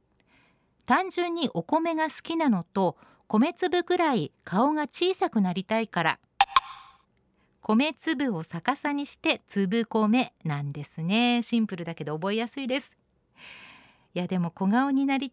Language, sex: Japanese, female